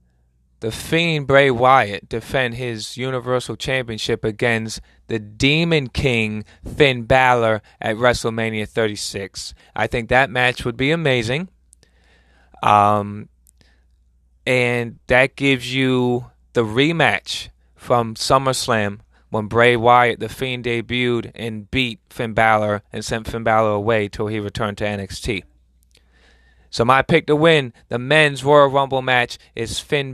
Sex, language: male, English